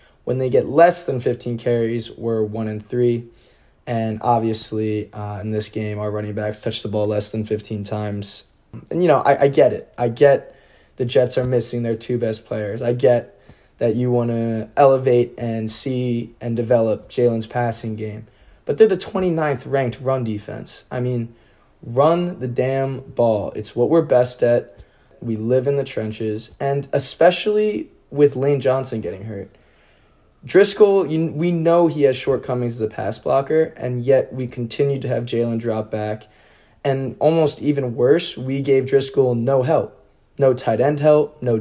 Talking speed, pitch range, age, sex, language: 170 wpm, 110-135 Hz, 20-39, male, English